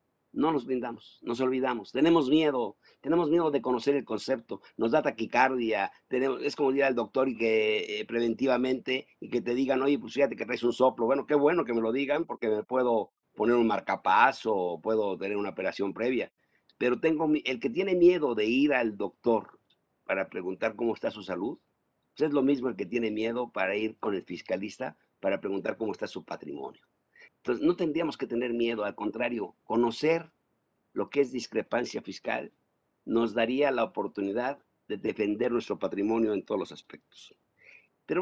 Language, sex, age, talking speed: Spanish, male, 50-69, 185 wpm